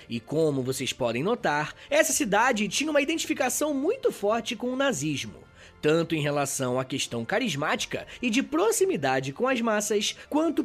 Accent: Brazilian